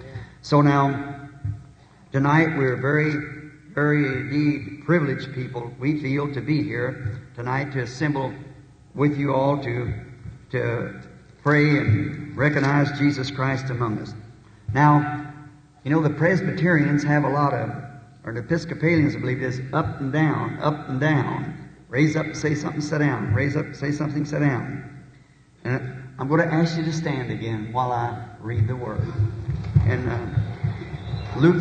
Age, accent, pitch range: 50-69, American, 130-155 Hz